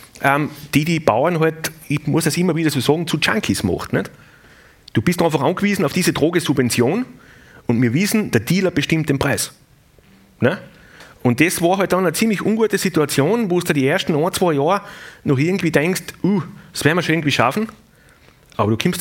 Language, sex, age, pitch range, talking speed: German, male, 30-49, 140-180 Hz, 190 wpm